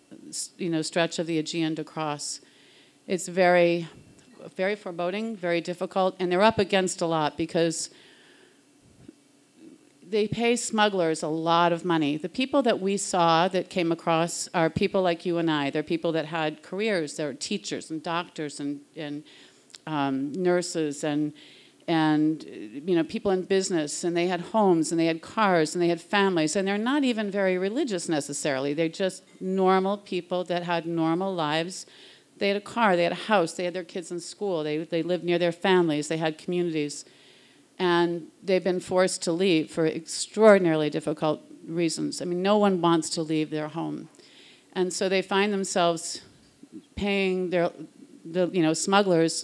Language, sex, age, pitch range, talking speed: English, female, 50-69, 160-195 Hz, 170 wpm